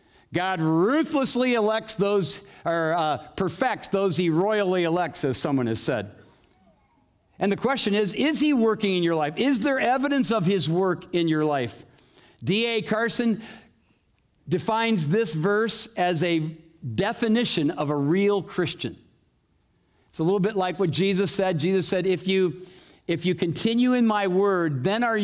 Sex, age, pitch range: male, 50-69, 160-225 Hz